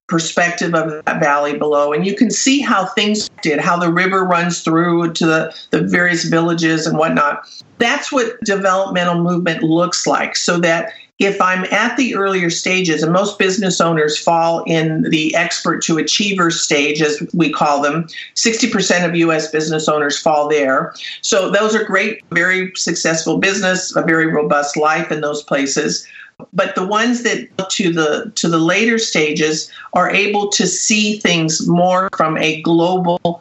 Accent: American